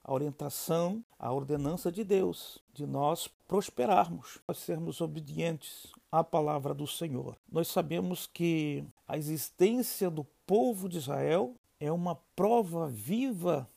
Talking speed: 125 wpm